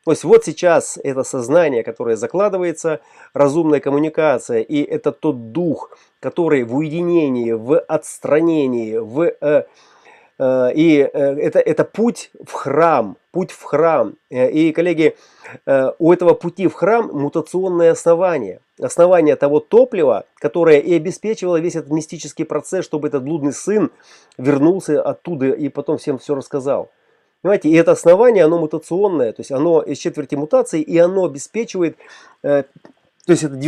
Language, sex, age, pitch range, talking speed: Russian, male, 30-49, 145-175 Hz, 140 wpm